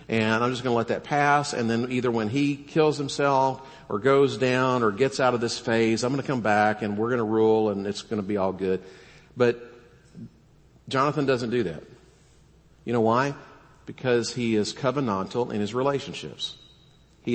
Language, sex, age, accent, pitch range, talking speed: English, male, 50-69, American, 105-140 Hz, 185 wpm